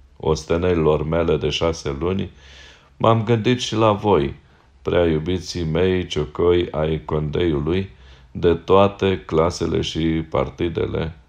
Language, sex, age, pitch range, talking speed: Romanian, male, 40-59, 75-95 Hz, 110 wpm